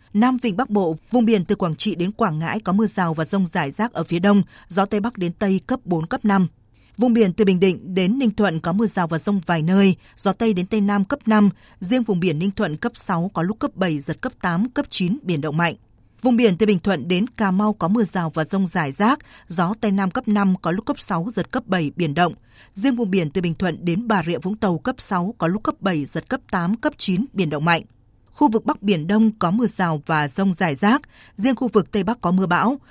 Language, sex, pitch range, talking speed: Vietnamese, female, 175-220 Hz, 265 wpm